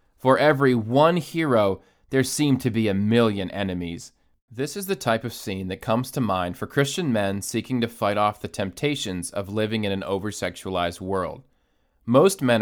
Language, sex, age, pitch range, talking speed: English, male, 30-49, 100-145 Hz, 180 wpm